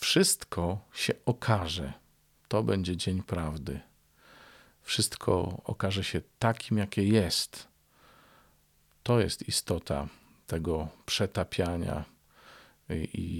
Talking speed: 85 wpm